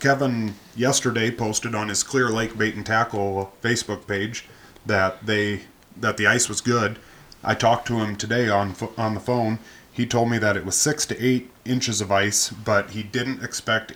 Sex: male